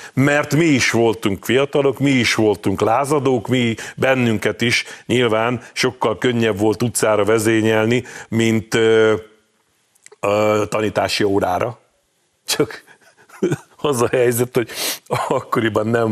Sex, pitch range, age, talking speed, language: male, 105-125 Hz, 50-69, 110 wpm, Hungarian